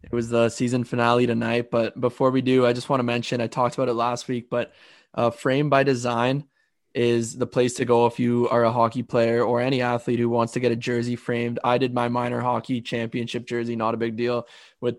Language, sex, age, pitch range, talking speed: English, male, 20-39, 115-125 Hz, 235 wpm